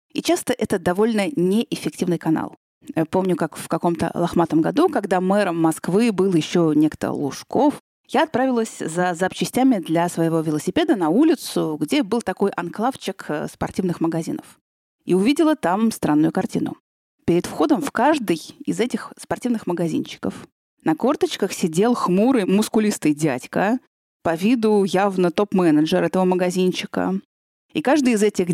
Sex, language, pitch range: female, Russian, 165-235 Hz